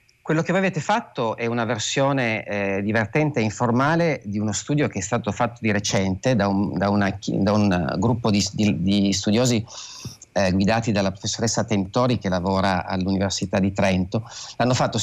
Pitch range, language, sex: 100-125 Hz, Italian, male